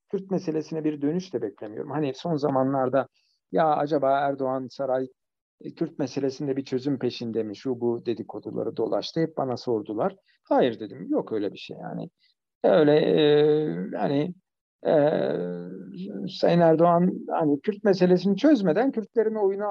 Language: Turkish